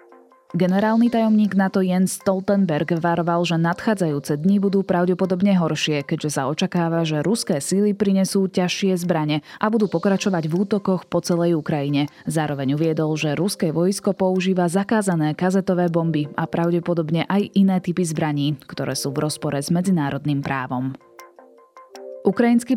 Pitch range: 160-195 Hz